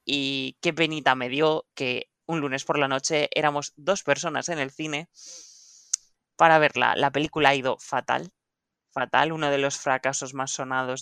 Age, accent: 20-39, Spanish